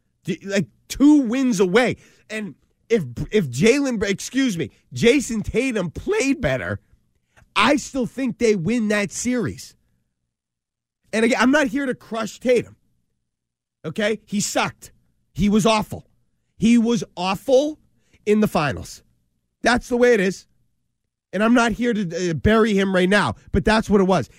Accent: American